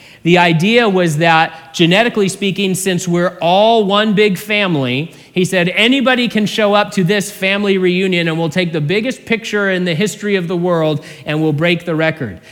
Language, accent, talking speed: English, American, 185 wpm